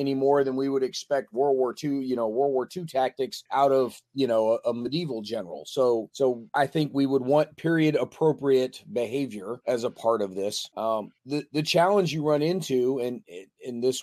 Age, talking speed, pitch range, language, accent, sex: 30-49, 205 wpm, 115-135 Hz, English, American, male